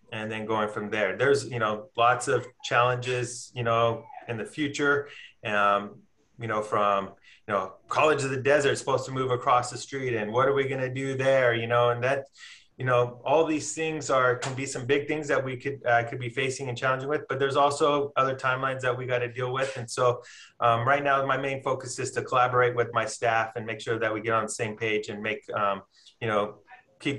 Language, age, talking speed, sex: English, 30-49, 240 wpm, male